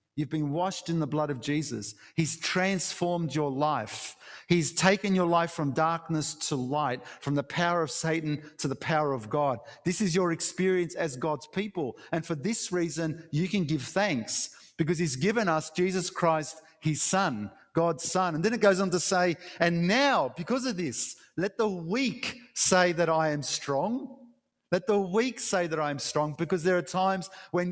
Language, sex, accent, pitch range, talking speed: English, male, Australian, 155-190 Hz, 190 wpm